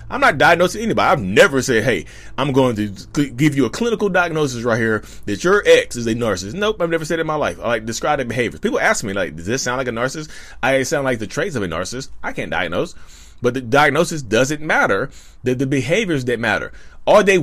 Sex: male